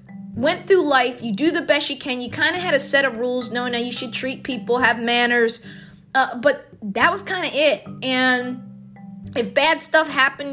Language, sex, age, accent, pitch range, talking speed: English, female, 20-39, American, 225-275 Hz, 210 wpm